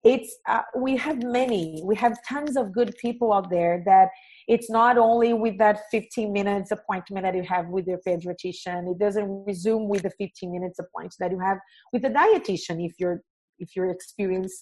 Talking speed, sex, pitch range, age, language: 195 wpm, female, 180-230 Hz, 40-59, English